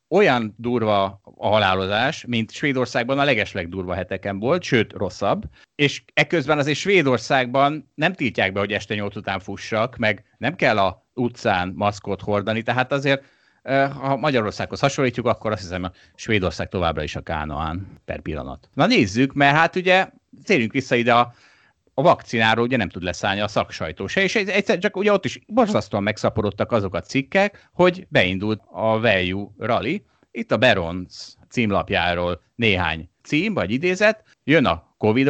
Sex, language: male, Hungarian